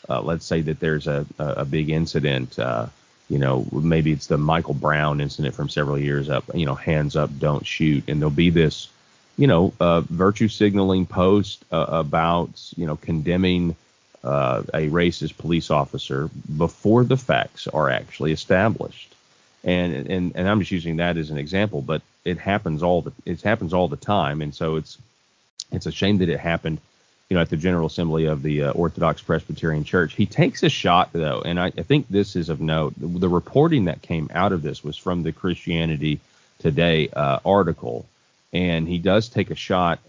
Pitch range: 75-95 Hz